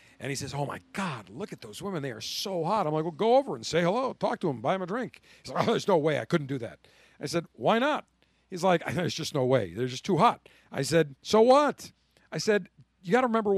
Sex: male